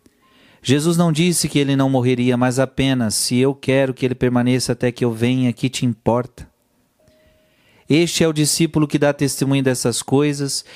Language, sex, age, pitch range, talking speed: Portuguese, male, 40-59, 115-145 Hz, 175 wpm